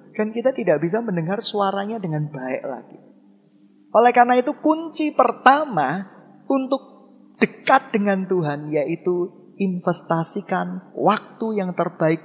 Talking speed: 115 wpm